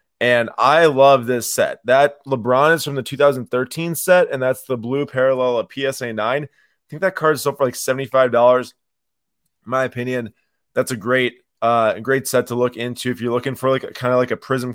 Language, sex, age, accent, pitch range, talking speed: English, male, 20-39, American, 120-135 Hz, 210 wpm